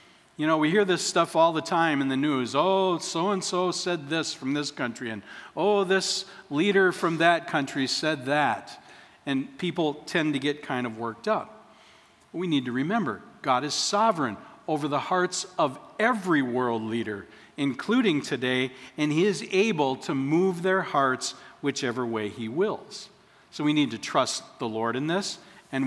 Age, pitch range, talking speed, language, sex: 50-69, 130-180 Hz, 175 wpm, English, male